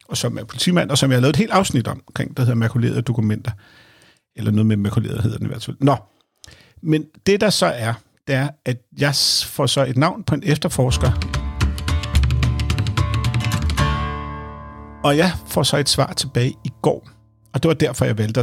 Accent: native